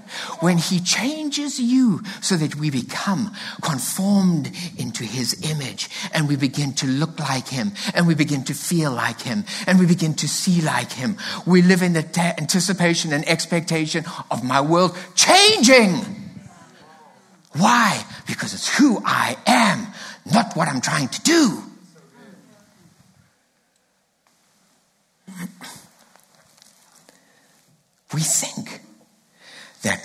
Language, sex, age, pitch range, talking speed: English, male, 60-79, 150-200 Hz, 120 wpm